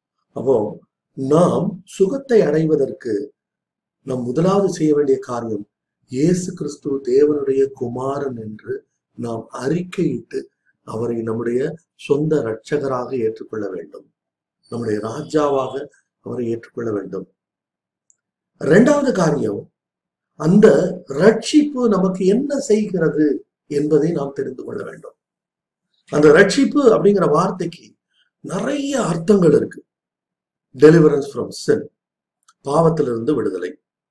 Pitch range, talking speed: 135-190 Hz, 90 wpm